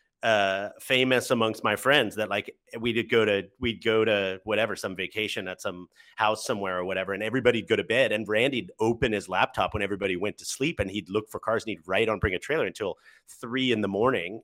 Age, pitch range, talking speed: 30-49, 100-125 Hz, 230 wpm